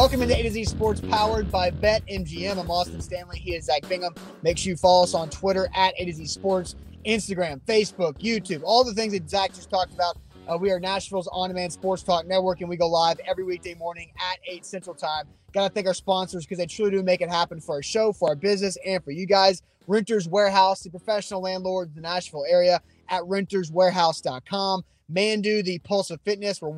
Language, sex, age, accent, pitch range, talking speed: English, male, 20-39, American, 175-200 Hz, 220 wpm